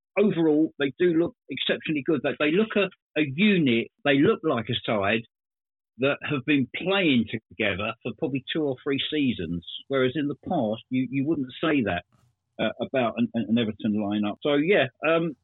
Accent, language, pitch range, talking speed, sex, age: British, English, 120-160 Hz, 180 wpm, male, 50-69